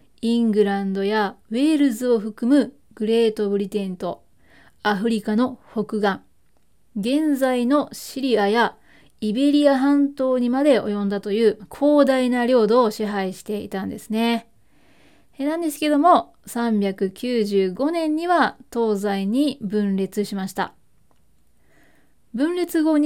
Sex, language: female, Japanese